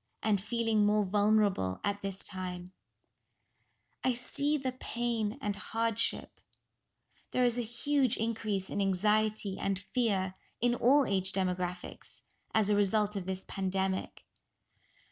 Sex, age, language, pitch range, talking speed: female, 20-39, English, 185-245 Hz, 125 wpm